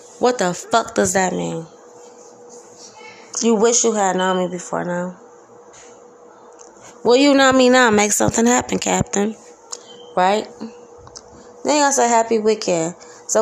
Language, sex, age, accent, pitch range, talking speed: English, female, 20-39, American, 180-240 Hz, 140 wpm